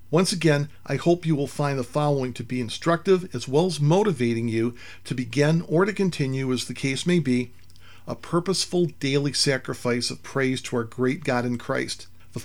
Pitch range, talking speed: 115-150 Hz, 195 wpm